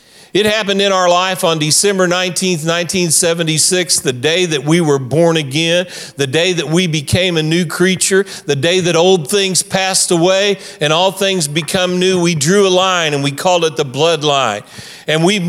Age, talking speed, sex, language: 50-69, 185 wpm, male, English